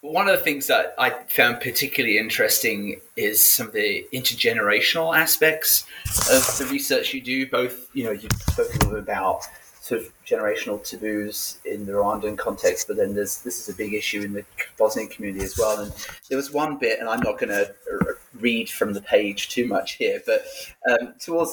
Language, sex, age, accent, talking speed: English, male, 30-49, British, 190 wpm